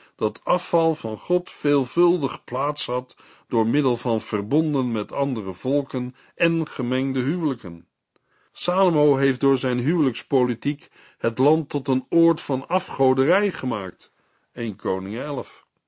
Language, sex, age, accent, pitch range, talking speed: Dutch, male, 50-69, Dutch, 115-160 Hz, 125 wpm